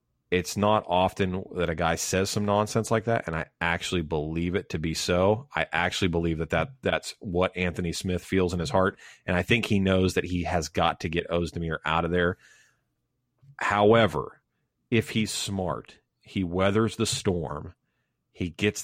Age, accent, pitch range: 30-49, American, 85-105 Hz